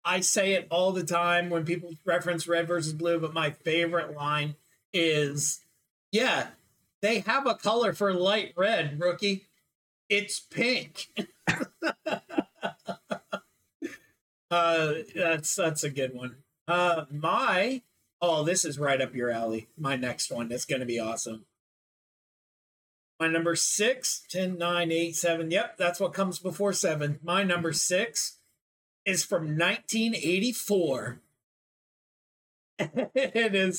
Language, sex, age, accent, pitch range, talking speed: English, male, 40-59, American, 165-205 Hz, 125 wpm